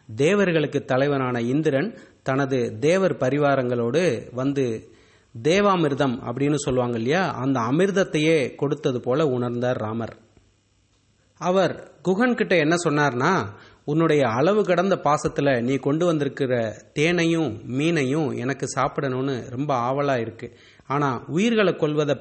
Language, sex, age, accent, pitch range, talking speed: English, male, 30-49, Indian, 125-160 Hz, 105 wpm